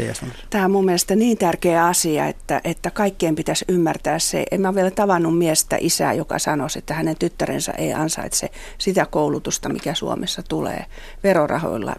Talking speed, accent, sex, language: 155 wpm, native, female, Finnish